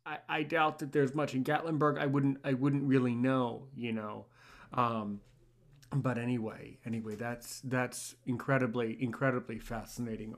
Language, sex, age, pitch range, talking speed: English, male, 30-49, 120-145 Hz, 145 wpm